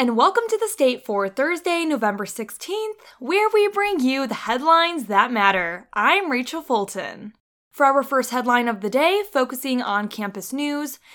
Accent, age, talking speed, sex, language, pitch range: American, 20-39, 165 wpm, female, English, 225-295 Hz